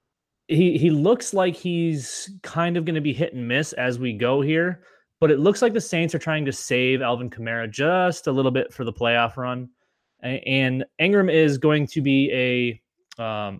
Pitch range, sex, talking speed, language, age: 115-140 Hz, male, 200 wpm, English, 20-39